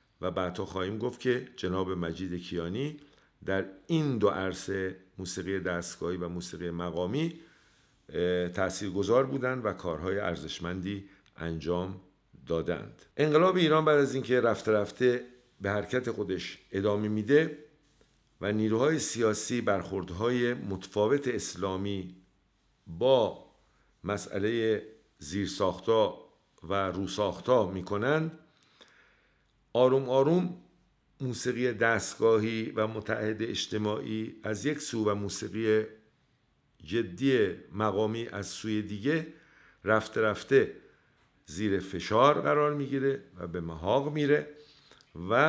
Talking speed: 105 wpm